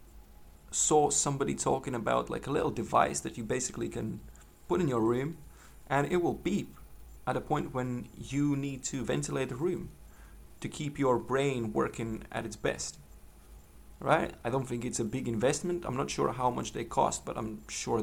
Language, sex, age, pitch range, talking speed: English, male, 30-49, 105-120 Hz, 185 wpm